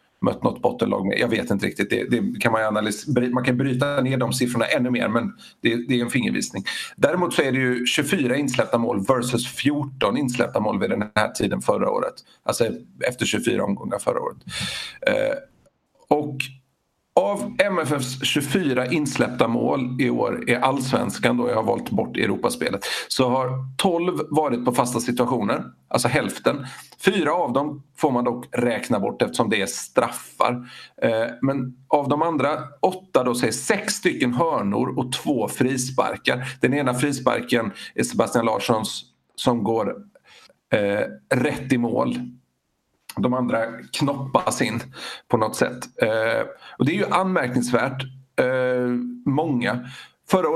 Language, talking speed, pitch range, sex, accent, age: Swedish, 150 wpm, 125-145 Hz, male, native, 50-69